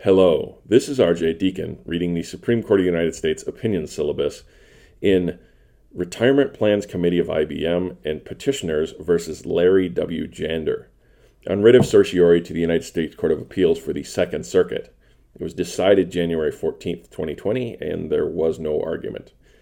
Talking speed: 160 wpm